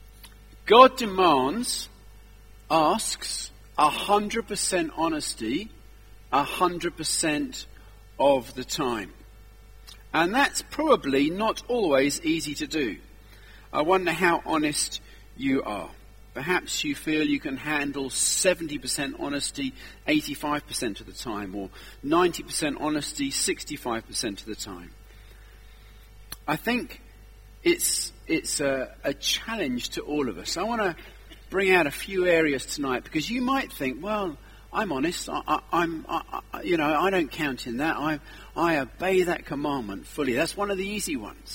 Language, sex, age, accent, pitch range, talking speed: English, male, 40-59, British, 110-185 Hz, 135 wpm